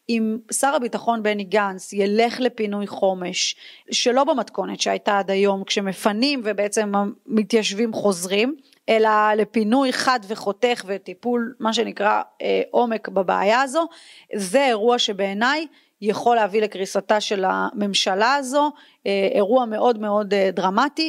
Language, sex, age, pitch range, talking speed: Hebrew, female, 30-49, 205-245 Hz, 115 wpm